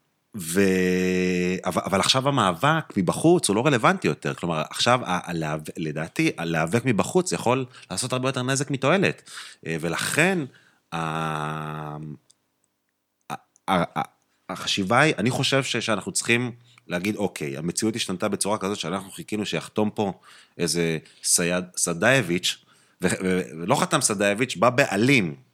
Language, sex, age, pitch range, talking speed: Hebrew, male, 30-49, 90-125 Hz, 125 wpm